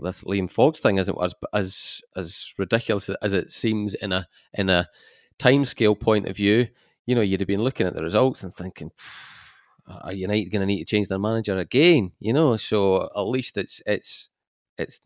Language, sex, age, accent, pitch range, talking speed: English, male, 30-49, British, 95-120 Hz, 195 wpm